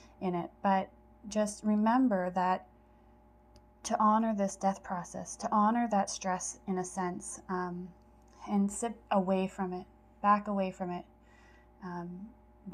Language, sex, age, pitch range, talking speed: English, female, 20-39, 170-195 Hz, 135 wpm